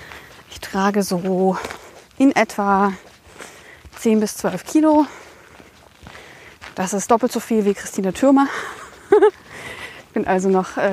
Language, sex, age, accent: German, female, 30-49, German